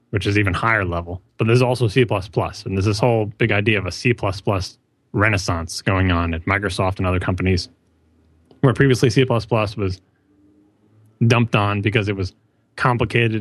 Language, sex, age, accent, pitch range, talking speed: English, male, 30-49, American, 100-120 Hz, 170 wpm